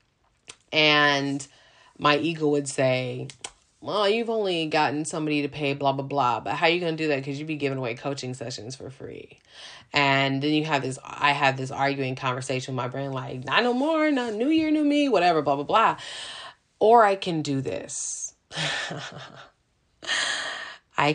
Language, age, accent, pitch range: English, 30-49, American, 125-150 Hz